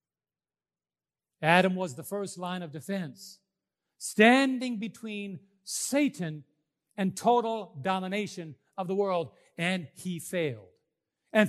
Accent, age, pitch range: American, 50-69, 150-205 Hz